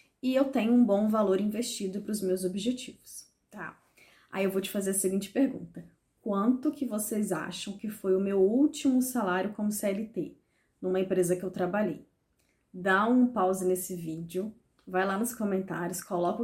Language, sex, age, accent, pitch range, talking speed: Portuguese, female, 20-39, Brazilian, 185-235 Hz, 170 wpm